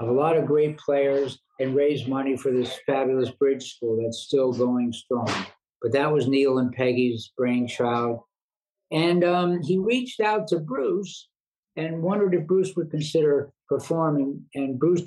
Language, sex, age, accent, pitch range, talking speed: English, male, 50-69, American, 130-170 Hz, 165 wpm